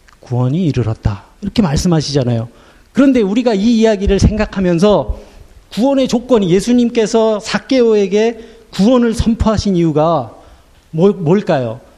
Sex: male